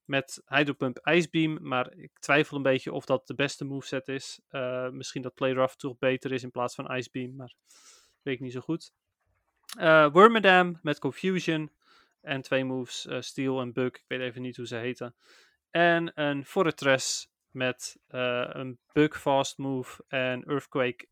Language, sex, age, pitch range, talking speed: Dutch, male, 30-49, 130-155 Hz, 175 wpm